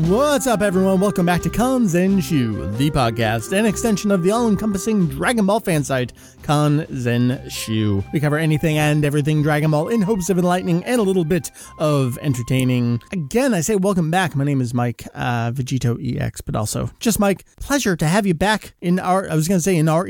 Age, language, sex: 30-49, English, male